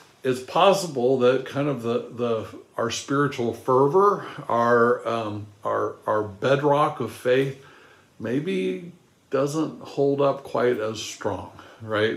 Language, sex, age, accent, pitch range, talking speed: English, male, 60-79, American, 110-135 Hz, 125 wpm